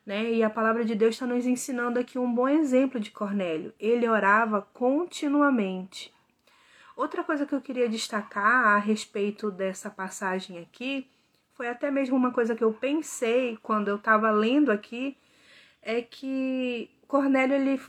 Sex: female